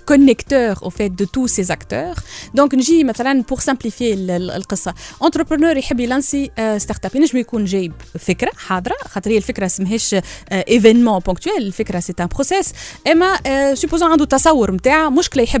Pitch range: 220-295 Hz